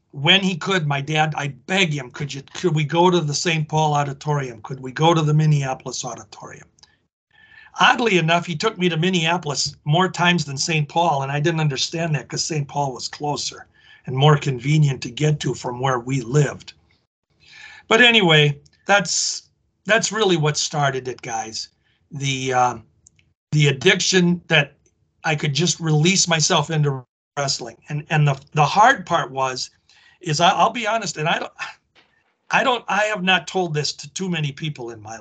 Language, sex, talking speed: English, male, 180 wpm